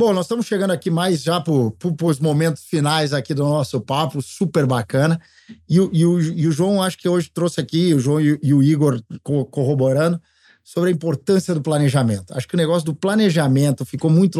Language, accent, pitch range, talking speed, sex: Portuguese, Brazilian, 150-195 Hz, 185 wpm, male